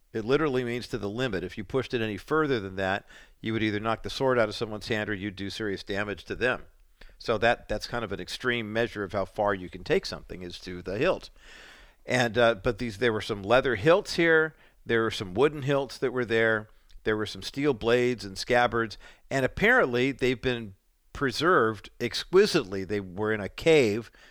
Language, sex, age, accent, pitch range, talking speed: English, male, 50-69, American, 105-130 Hz, 210 wpm